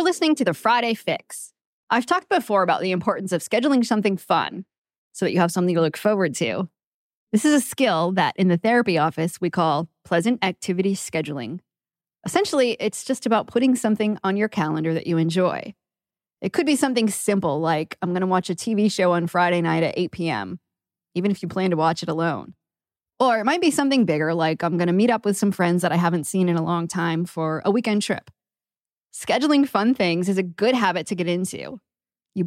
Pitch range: 170-225 Hz